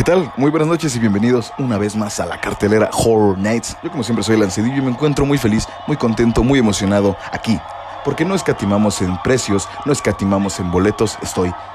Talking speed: 205 wpm